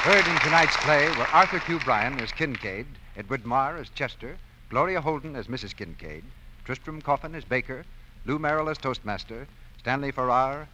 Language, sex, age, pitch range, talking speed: English, male, 60-79, 105-150 Hz, 160 wpm